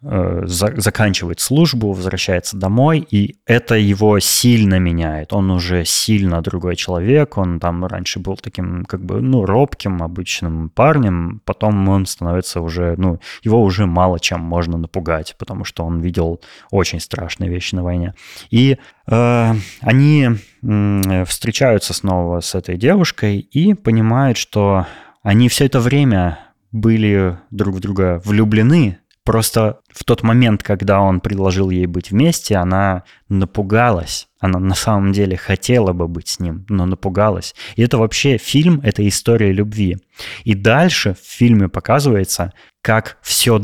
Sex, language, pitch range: male, Russian, 90-115 Hz